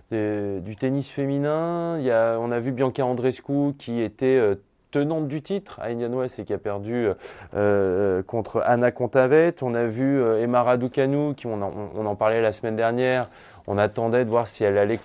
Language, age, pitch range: French, 20-39, 105-130 Hz